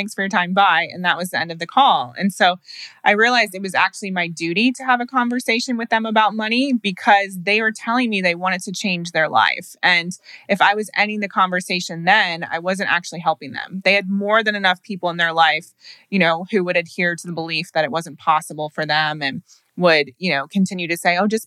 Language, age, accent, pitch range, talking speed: English, 20-39, American, 165-205 Hz, 240 wpm